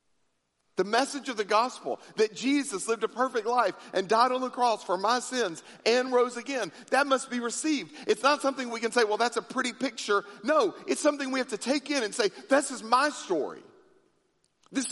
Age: 50-69